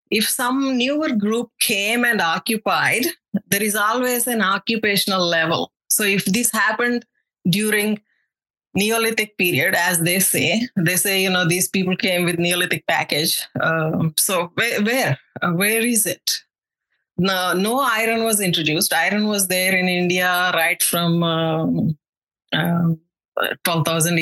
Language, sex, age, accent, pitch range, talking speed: English, female, 20-39, Indian, 170-210 Hz, 140 wpm